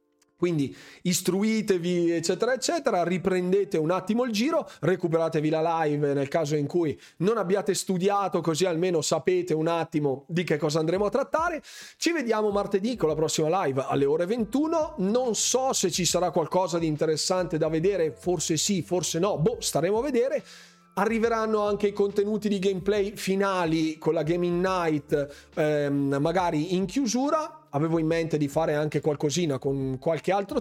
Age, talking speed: 30-49, 160 wpm